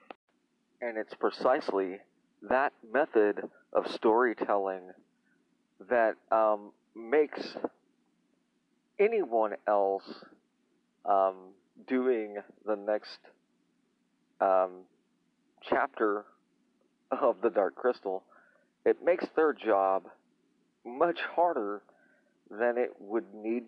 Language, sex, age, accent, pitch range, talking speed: English, male, 40-59, American, 105-145 Hz, 80 wpm